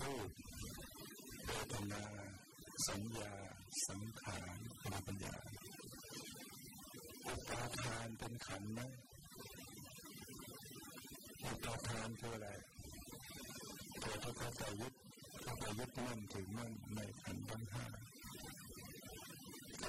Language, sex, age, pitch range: Thai, female, 50-69, 105-120 Hz